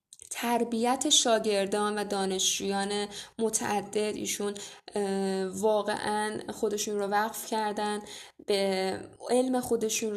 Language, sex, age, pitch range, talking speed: Persian, female, 10-29, 205-230 Hz, 85 wpm